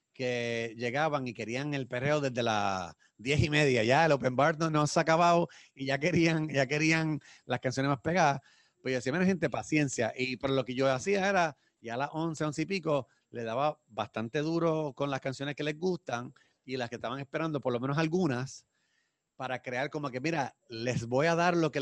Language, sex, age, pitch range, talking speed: English, male, 30-49, 125-155 Hz, 215 wpm